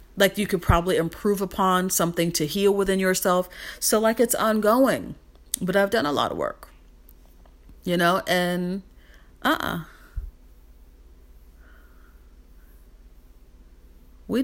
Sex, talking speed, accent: female, 120 wpm, American